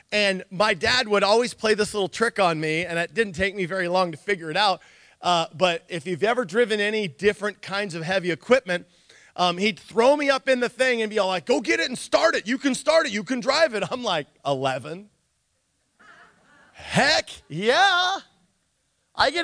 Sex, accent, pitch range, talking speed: male, American, 145-215 Hz, 205 wpm